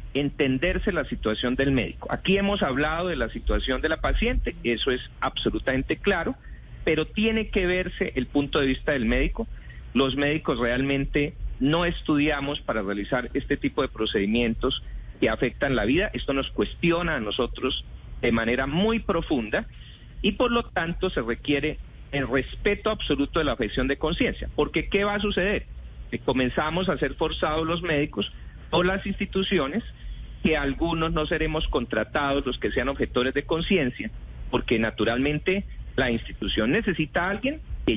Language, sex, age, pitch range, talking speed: Spanish, male, 40-59, 120-175 Hz, 155 wpm